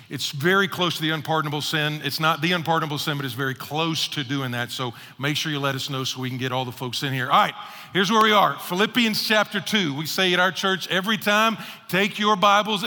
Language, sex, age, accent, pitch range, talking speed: English, male, 50-69, American, 160-210 Hz, 250 wpm